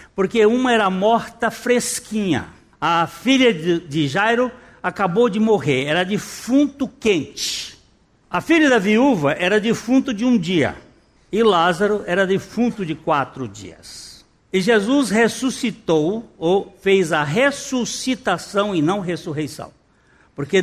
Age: 60-79